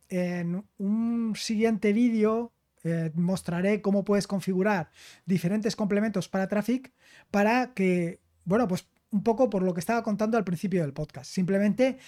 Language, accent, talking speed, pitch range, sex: Spanish, Spanish, 140 wpm, 175-225 Hz, male